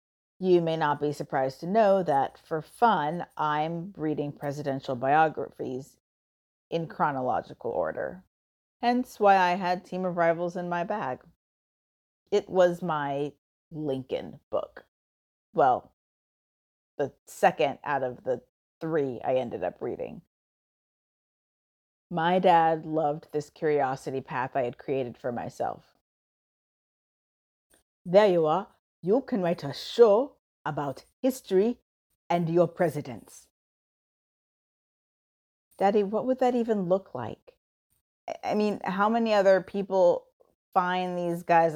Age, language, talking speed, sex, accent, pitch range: 30-49, English, 120 wpm, female, American, 145-195 Hz